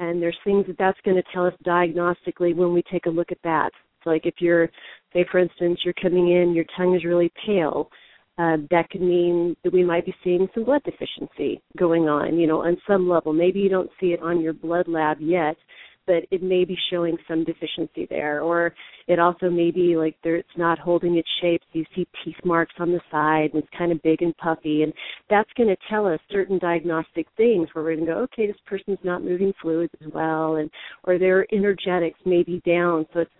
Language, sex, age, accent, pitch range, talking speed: English, female, 40-59, American, 165-180 Hz, 225 wpm